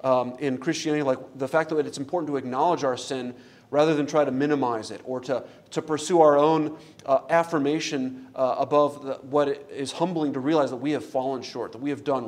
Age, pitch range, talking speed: 40-59, 130-160 Hz, 220 wpm